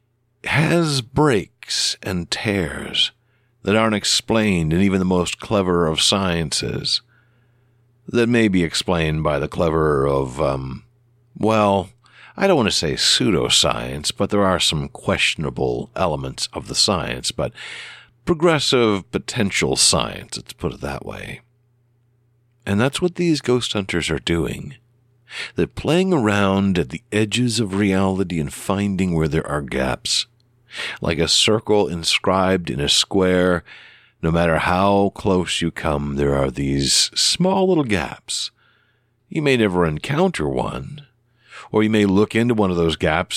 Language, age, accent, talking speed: English, 60-79, American, 140 wpm